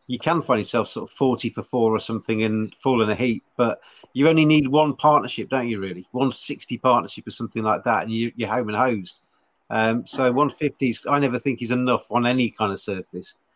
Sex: male